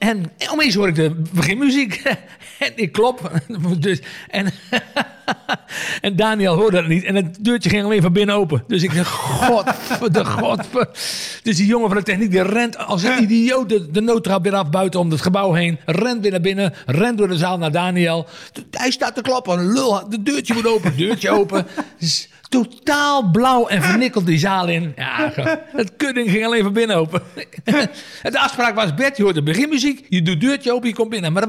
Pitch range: 165-230 Hz